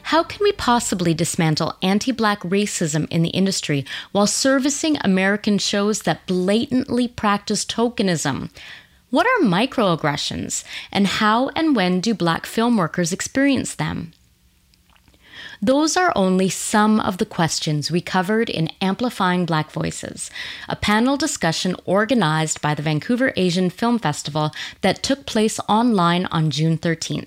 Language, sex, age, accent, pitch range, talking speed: English, female, 30-49, American, 160-230 Hz, 130 wpm